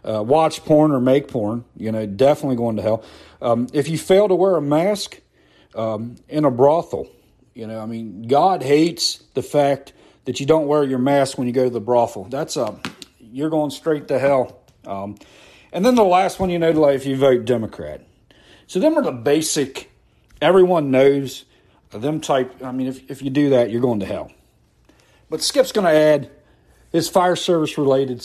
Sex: male